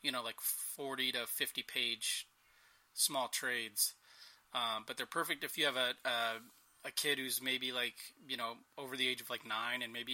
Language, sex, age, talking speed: English, male, 30-49, 195 wpm